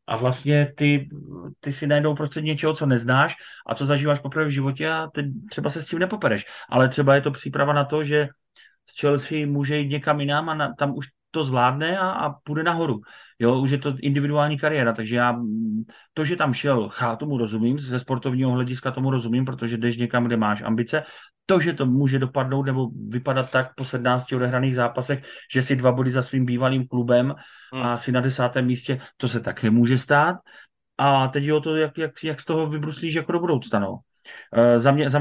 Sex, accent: male, native